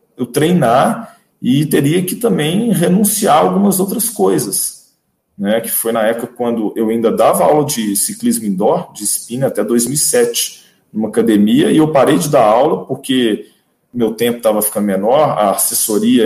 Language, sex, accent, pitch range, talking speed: Portuguese, male, Brazilian, 115-190 Hz, 160 wpm